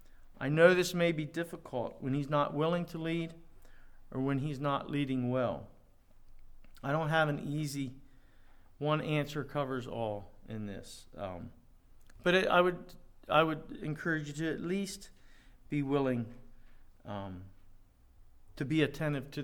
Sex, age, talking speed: male, 50-69, 140 wpm